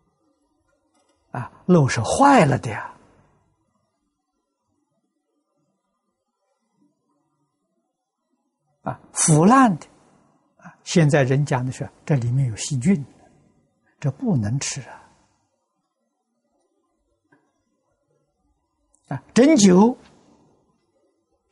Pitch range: 135-205 Hz